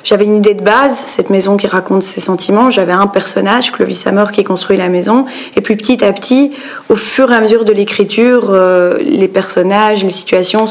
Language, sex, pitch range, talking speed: French, female, 195-265 Hz, 205 wpm